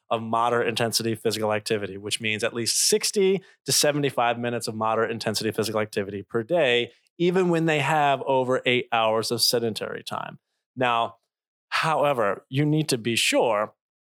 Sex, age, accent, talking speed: male, 30-49, American, 160 wpm